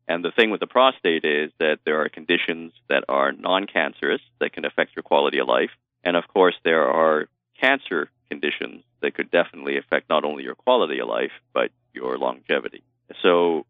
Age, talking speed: 40-59, 185 wpm